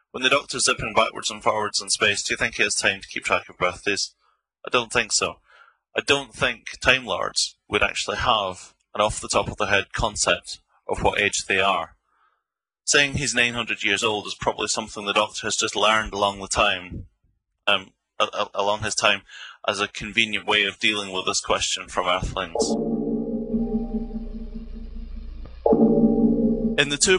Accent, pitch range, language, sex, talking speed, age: British, 105-145 Hz, English, male, 180 wpm, 20-39